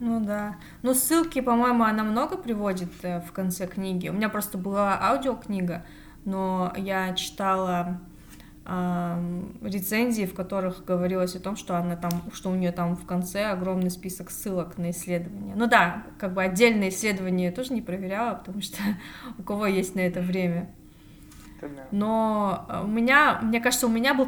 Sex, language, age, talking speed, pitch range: female, Russian, 20-39, 165 wpm, 185-225 Hz